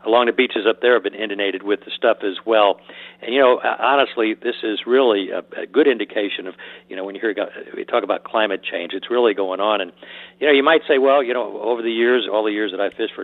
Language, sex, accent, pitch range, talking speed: English, male, American, 100-125 Hz, 260 wpm